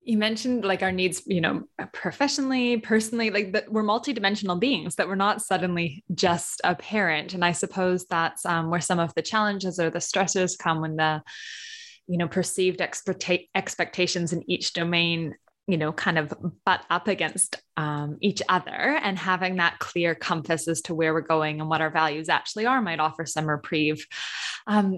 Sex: female